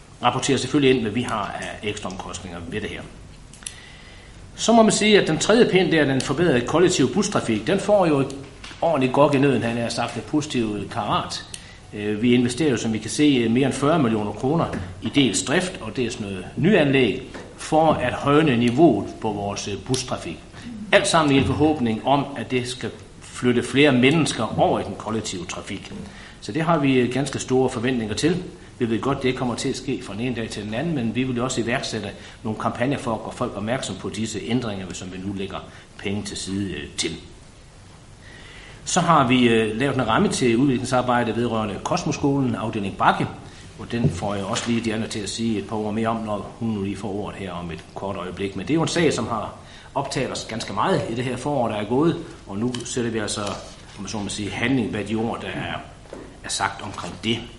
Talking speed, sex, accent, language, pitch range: 210 wpm, male, native, Danish, 100-130 Hz